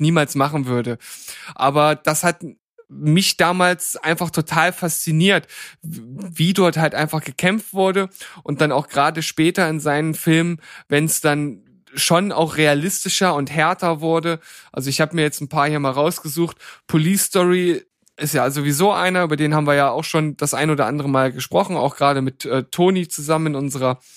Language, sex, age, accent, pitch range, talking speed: German, male, 10-29, German, 145-165 Hz, 175 wpm